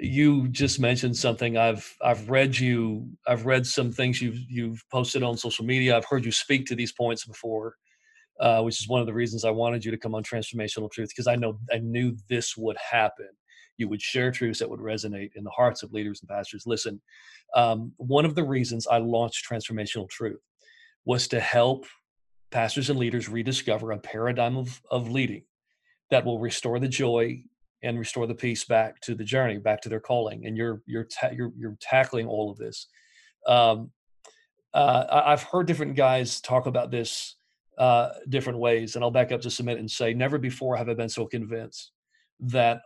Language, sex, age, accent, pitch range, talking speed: English, male, 40-59, American, 115-130 Hz, 195 wpm